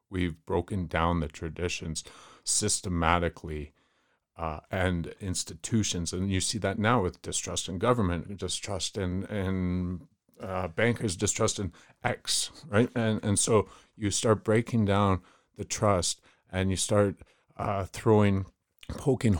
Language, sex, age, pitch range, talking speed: English, male, 40-59, 90-105 Hz, 130 wpm